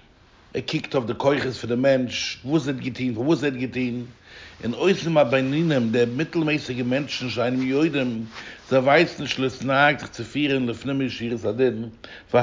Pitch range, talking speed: 120-150 Hz, 170 wpm